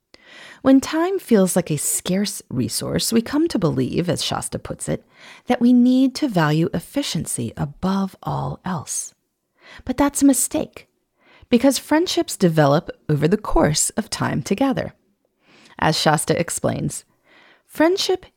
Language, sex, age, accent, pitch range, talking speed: English, female, 30-49, American, 180-285 Hz, 135 wpm